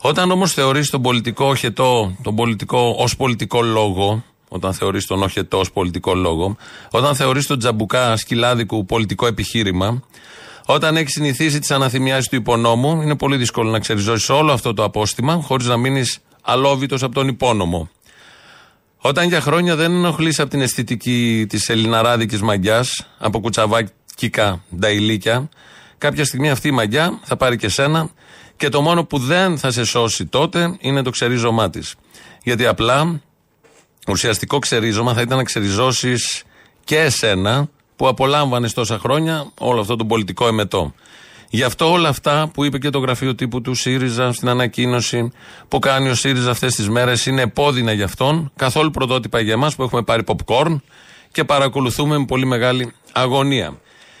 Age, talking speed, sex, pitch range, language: 40-59, 160 wpm, male, 115-140 Hz, Greek